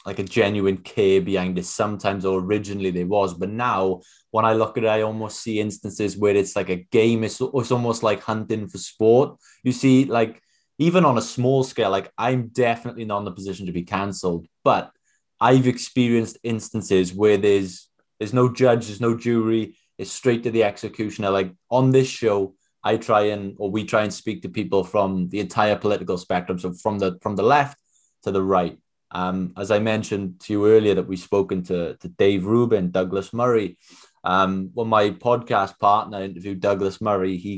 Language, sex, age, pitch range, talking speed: English, male, 20-39, 95-120 Hz, 200 wpm